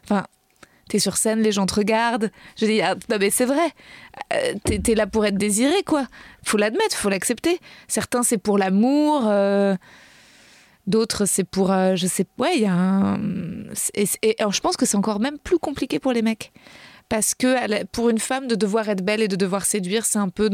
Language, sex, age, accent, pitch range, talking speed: French, female, 20-39, French, 195-230 Hz, 215 wpm